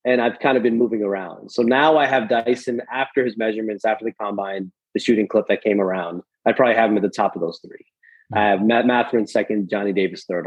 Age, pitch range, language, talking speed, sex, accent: 30-49, 110-130 Hz, English, 240 wpm, male, American